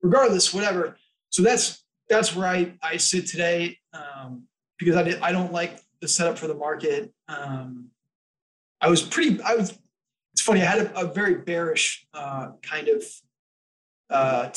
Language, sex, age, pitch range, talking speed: English, male, 20-39, 150-195 Hz, 165 wpm